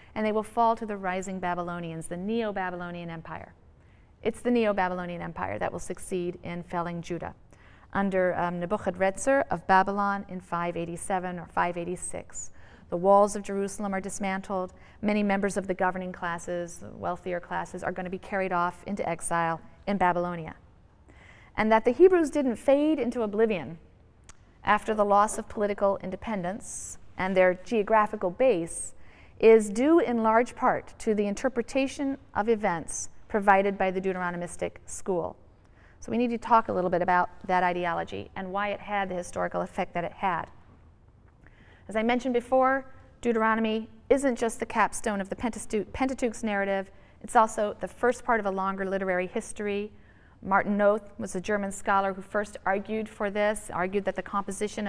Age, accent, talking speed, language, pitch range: 40-59, American, 160 wpm, English, 180-220 Hz